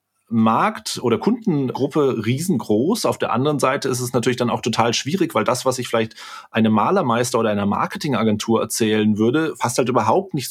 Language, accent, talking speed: German, German, 175 wpm